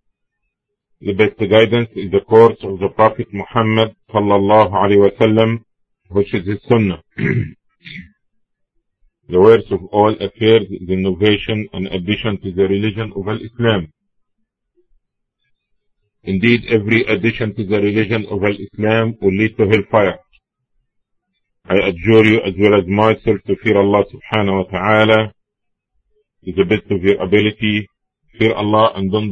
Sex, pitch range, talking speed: male, 100-110 Hz, 130 wpm